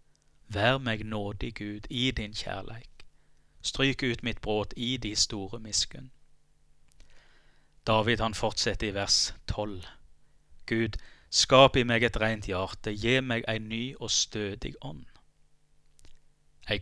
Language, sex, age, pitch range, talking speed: English, male, 30-49, 80-115 Hz, 130 wpm